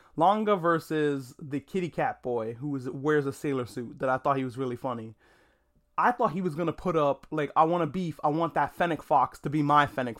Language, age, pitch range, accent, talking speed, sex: English, 20-39, 135-175 Hz, American, 230 wpm, male